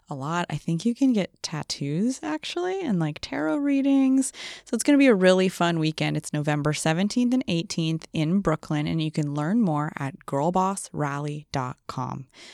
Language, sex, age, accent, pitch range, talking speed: English, female, 20-39, American, 150-225 Hz, 170 wpm